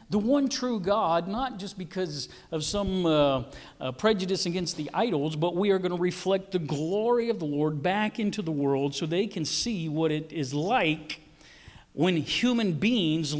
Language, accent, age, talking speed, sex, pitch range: English, American, 50-69, 185 wpm, male, 150-195 Hz